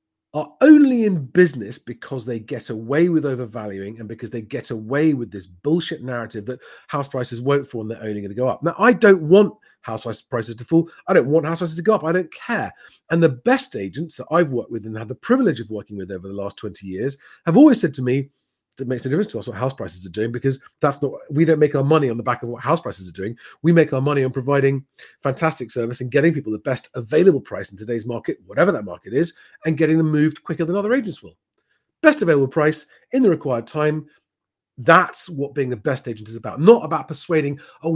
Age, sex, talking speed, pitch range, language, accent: 40-59, male, 240 wpm, 120-170 Hz, English, British